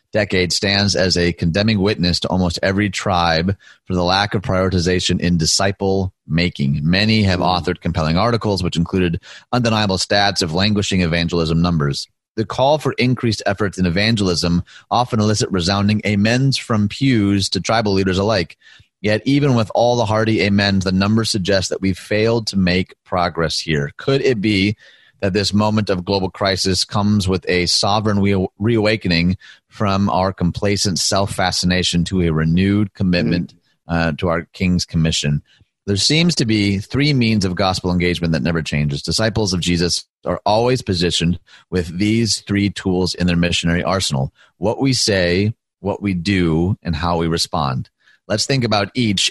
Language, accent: English, American